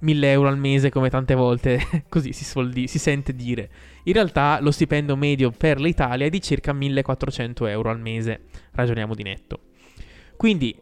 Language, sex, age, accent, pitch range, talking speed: Italian, male, 20-39, native, 130-160 Hz, 170 wpm